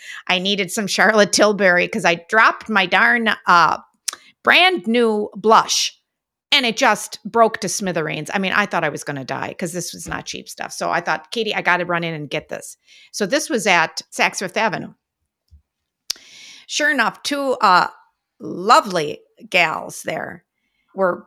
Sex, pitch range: female, 170-225 Hz